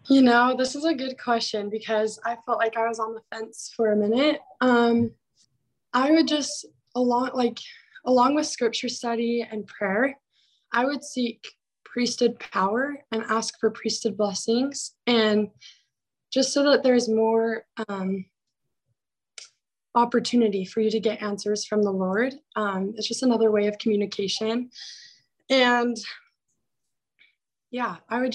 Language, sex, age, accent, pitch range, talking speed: English, female, 20-39, American, 220-250 Hz, 145 wpm